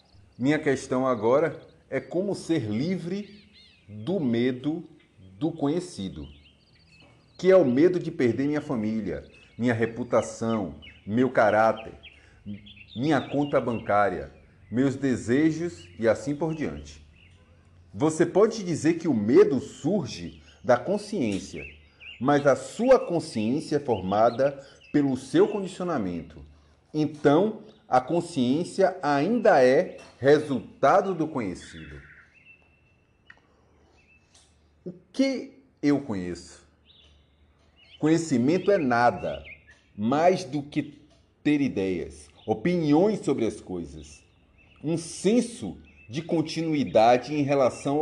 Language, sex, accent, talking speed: Portuguese, male, Brazilian, 100 wpm